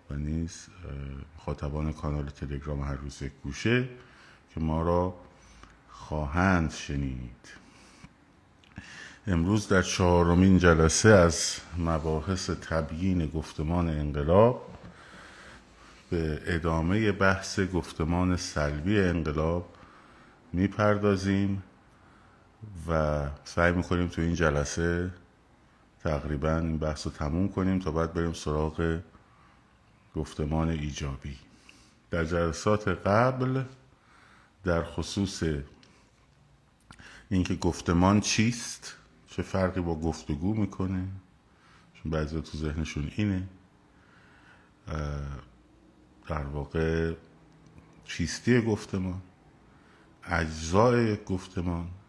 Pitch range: 75-95 Hz